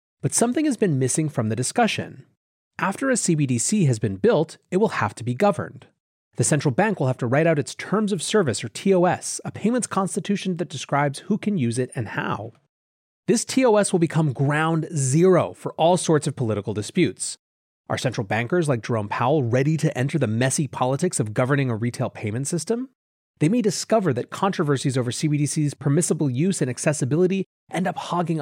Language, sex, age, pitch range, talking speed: English, male, 30-49, 125-175 Hz, 190 wpm